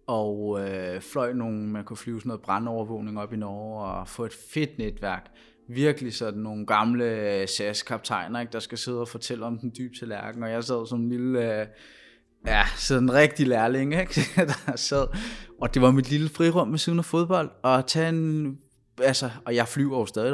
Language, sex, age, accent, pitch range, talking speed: Danish, male, 20-39, native, 110-135 Hz, 190 wpm